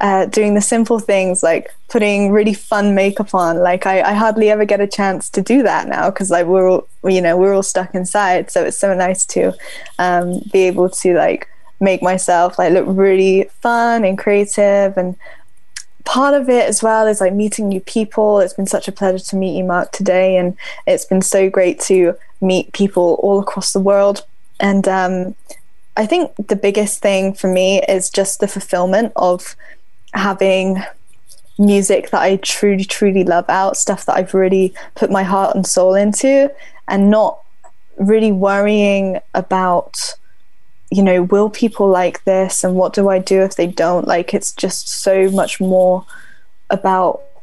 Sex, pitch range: female, 185-205 Hz